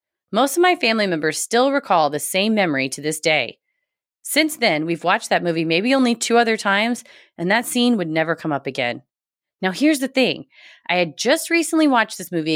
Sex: female